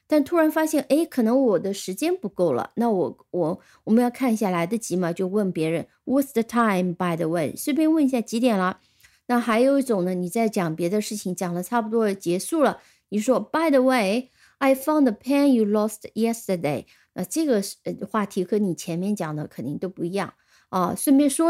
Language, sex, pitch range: Chinese, female, 185-260 Hz